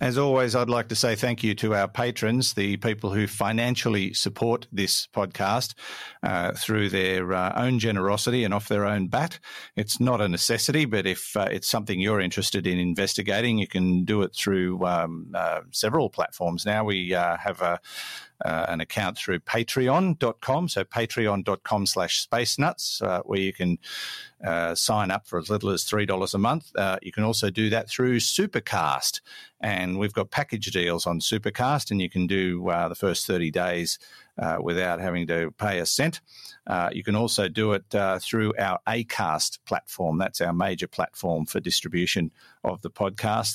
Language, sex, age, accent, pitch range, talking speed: English, male, 50-69, Australian, 90-115 Hz, 180 wpm